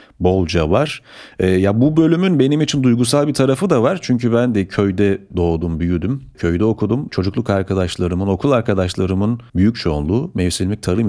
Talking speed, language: 150 wpm, Turkish